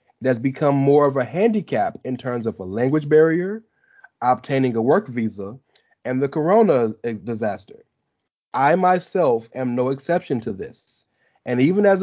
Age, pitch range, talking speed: 30-49, 120-170 Hz, 150 wpm